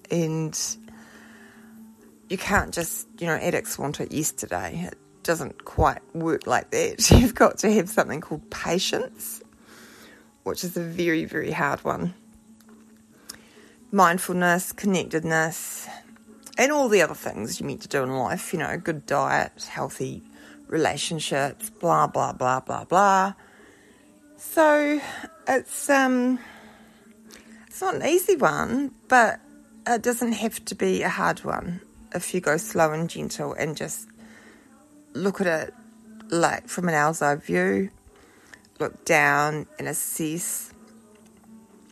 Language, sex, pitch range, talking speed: English, female, 170-230 Hz, 130 wpm